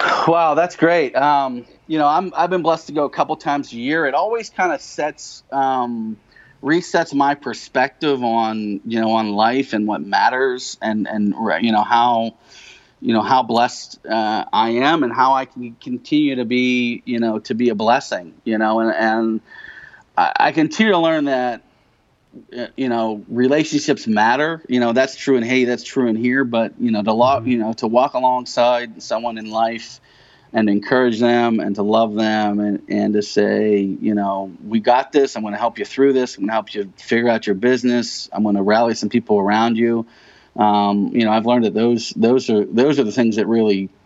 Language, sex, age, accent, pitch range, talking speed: English, male, 30-49, American, 110-130 Hz, 205 wpm